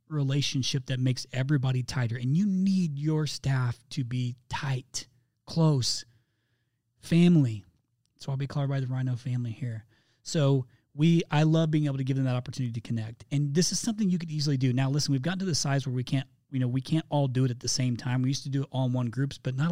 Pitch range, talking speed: 125-145 Hz, 235 wpm